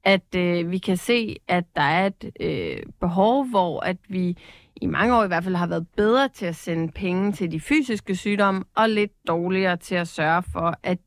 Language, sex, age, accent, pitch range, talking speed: Danish, female, 30-49, native, 170-195 Hz, 195 wpm